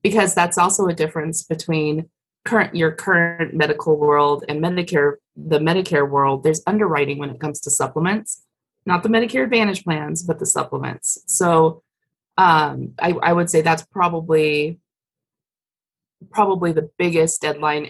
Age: 30-49